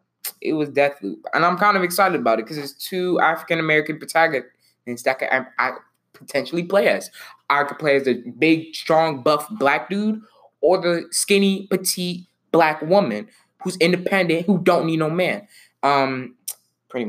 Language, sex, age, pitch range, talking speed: English, male, 20-39, 120-170 Hz, 170 wpm